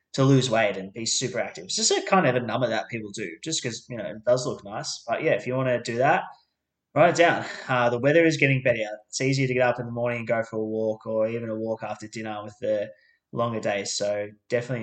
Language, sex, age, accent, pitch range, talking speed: English, male, 20-39, Australian, 110-120 Hz, 270 wpm